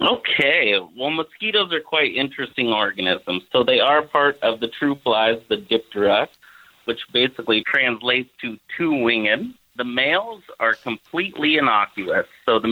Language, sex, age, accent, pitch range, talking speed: English, male, 30-49, American, 110-145 Hz, 140 wpm